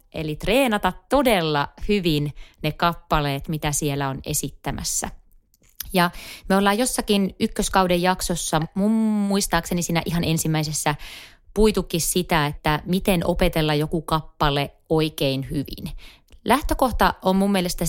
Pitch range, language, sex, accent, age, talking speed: 155-190 Hz, Finnish, female, native, 30-49, 110 wpm